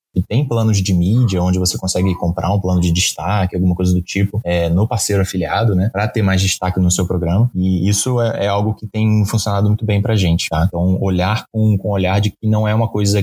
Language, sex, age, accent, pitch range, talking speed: Portuguese, male, 20-39, Brazilian, 95-110 Hz, 240 wpm